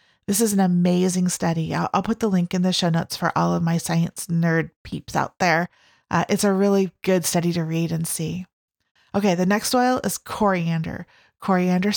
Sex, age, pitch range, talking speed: female, 30-49, 170-200 Hz, 200 wpm